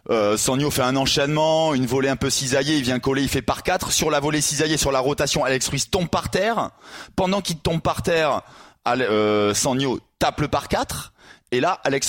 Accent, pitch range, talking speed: French, 110-150 Hz, 220 wpm